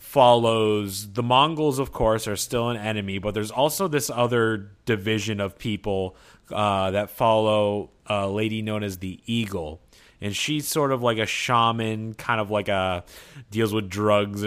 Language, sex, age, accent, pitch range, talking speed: English, male, 30-49, American, 95-115 Hz, 165 wpm